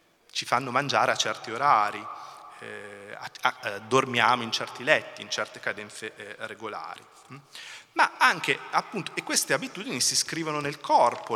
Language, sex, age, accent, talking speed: Italian, male, 30-49, native, 135 wpm